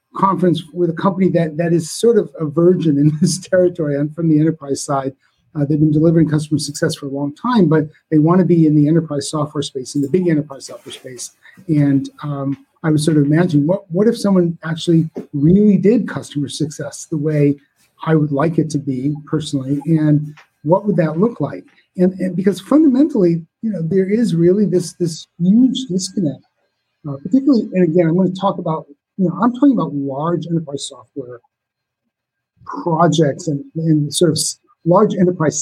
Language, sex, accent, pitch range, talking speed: English, male, American, 145-180 Hz, 190 wpm